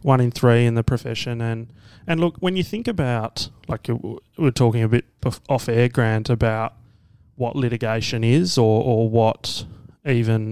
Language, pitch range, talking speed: English, 110-130 Hz, 165 wpm